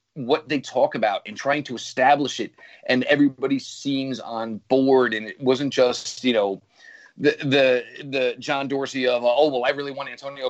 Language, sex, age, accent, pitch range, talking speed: English, male, 30-49, American, 125-155 Hz, 185 wpm